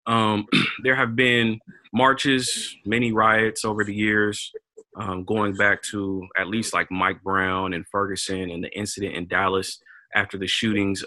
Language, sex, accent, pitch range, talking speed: English, male, American, 100-125 Hz, 155 wpm